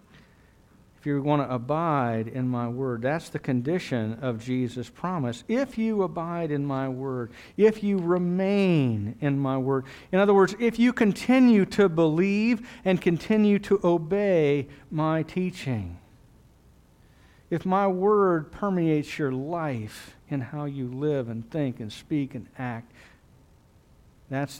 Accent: American